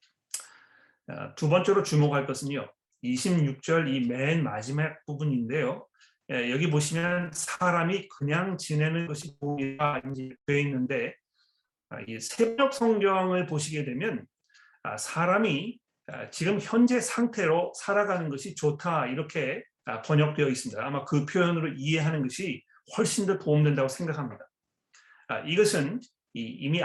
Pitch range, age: 145-185 Hz, 40-59